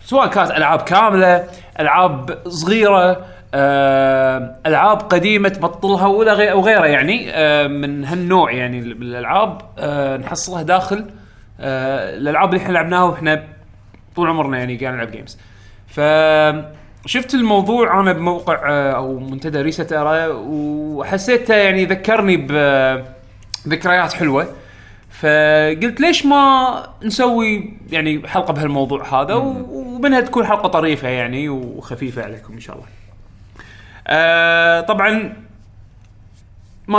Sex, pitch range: male, 130-195 Hz